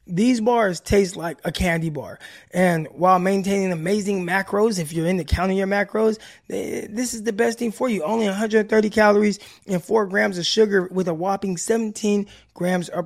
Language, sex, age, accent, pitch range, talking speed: English, male, 20-39, American, 170-210 Hz, 180 wpm